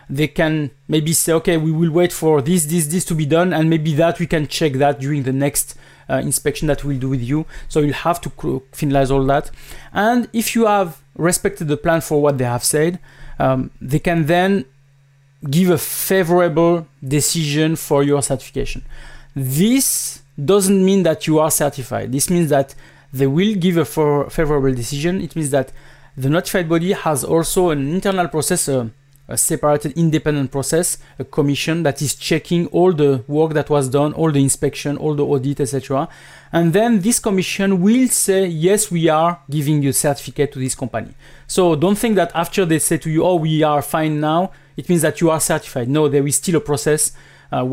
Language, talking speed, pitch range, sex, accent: English, 195 wpm, 140-170 Hz, male, French